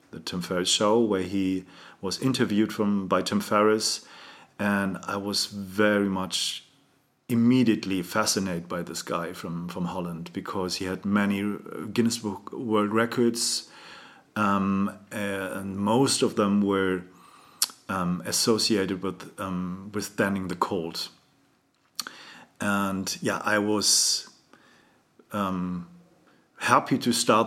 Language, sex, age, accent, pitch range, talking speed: English, male, 40-59, German, 95-105 Hz, 120 wpm